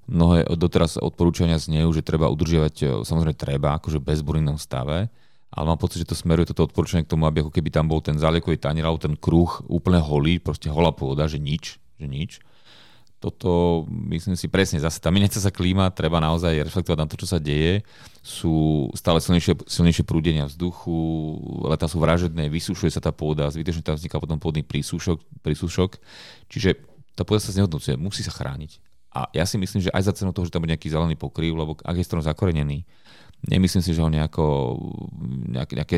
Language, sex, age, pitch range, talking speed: Slovak, male, 30-49, 80-90 Hz, 185 wpm